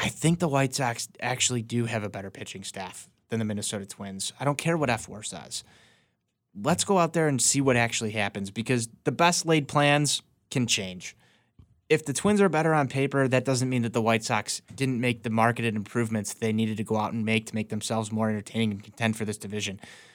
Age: 20-39